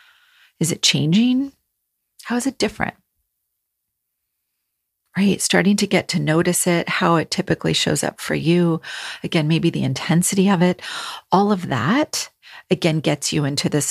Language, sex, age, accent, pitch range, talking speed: English, female, 40-59, American, 150-215 Hz, 150 wpm